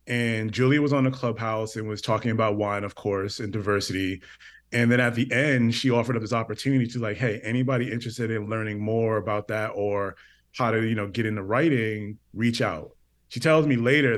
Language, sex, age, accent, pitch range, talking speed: English, male, 30-49, American, 105-130 Hz, 205 wpm